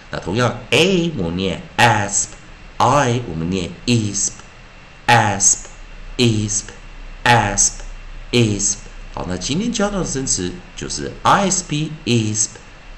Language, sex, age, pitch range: Chinese, male, 50-69, 85-120 Hz